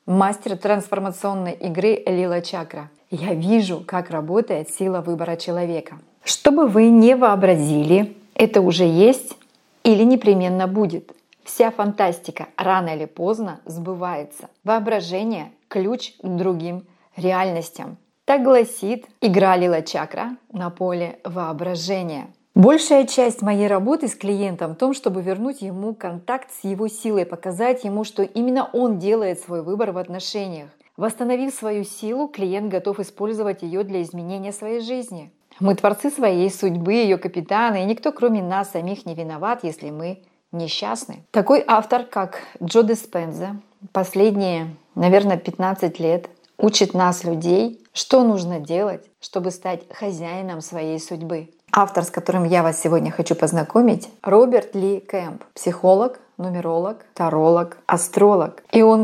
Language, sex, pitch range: Russian, female, 175-220 Hz